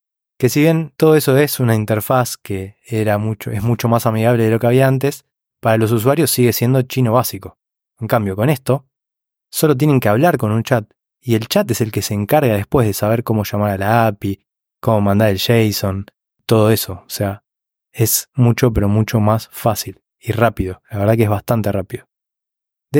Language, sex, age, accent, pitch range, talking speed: Spanish, male, 20-39, Argentinian, 110-135 Hz, 195 wpm